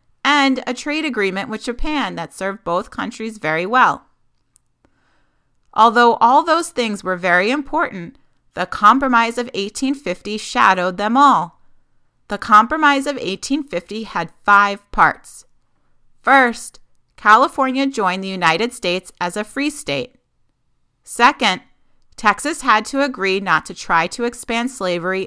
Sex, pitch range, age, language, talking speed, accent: female, 180-250 Hz, 30-49, English, 130 wpm, American